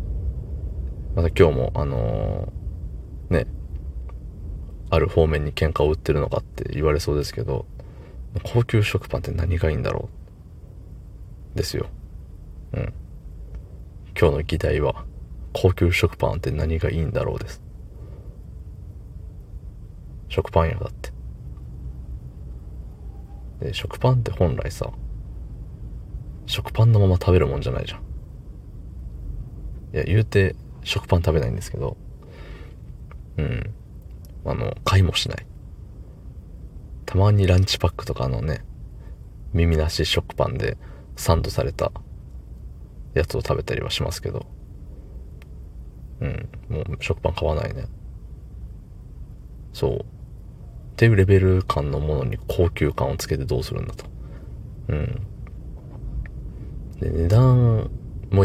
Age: 40-59